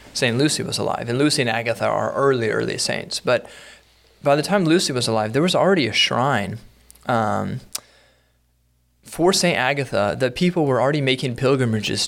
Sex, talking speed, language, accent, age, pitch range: male, 170 wpm, English, American, 20-39, 110-135 Hz